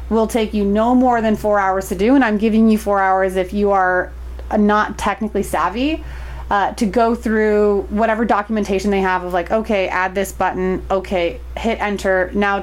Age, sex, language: 30-49, female, English